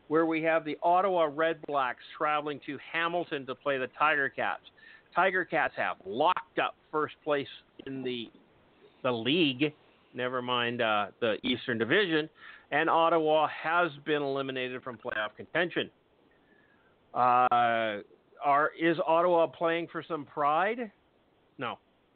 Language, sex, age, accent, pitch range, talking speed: English, male, 50-69, American, 125-165 Hz, 135 wpm